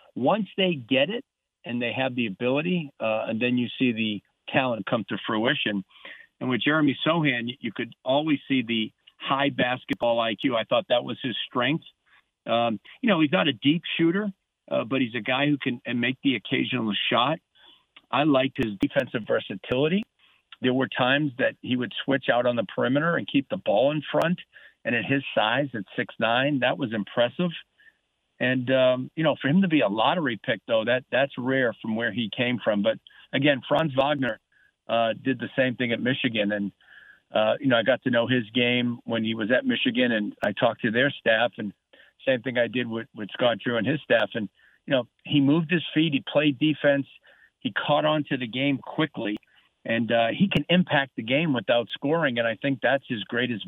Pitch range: 120-155 Hz